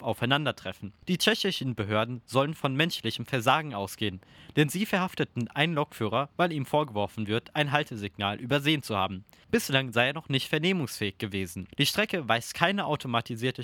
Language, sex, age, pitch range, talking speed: German, male, 20-39, 115-165 Hz, 155 wpm